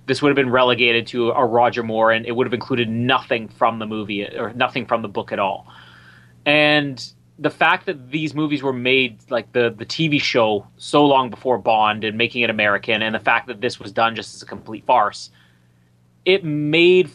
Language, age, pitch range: English, 30-49, 105-140 Hz